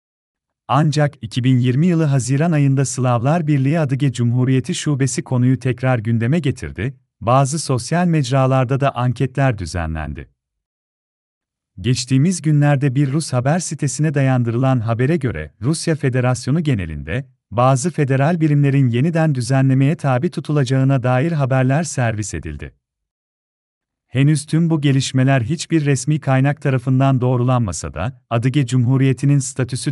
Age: 40-59